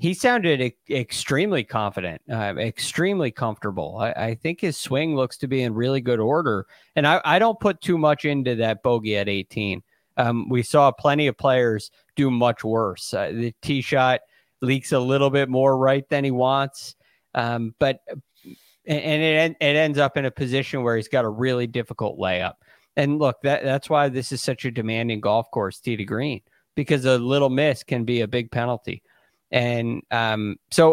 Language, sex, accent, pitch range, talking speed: English, male, American, 115-145 Hz, 185 wpm